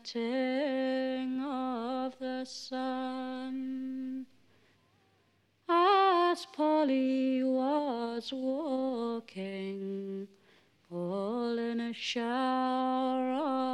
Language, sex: French, female